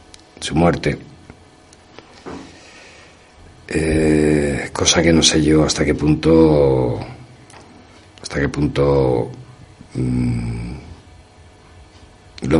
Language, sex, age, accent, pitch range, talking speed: Spanish, male, 60-79, Spanish, 70-100 Hz, 75 wpm